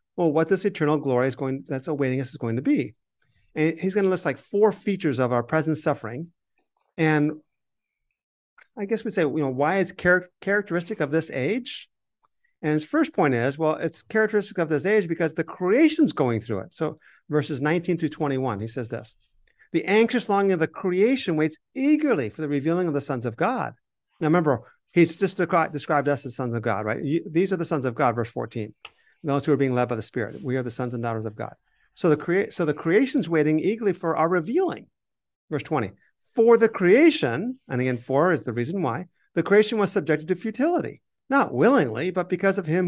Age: 50-69